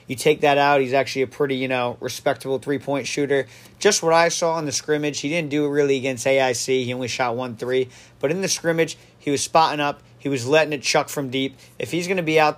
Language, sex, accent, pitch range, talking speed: English, male, American, 125-165 Hz, 255 wpm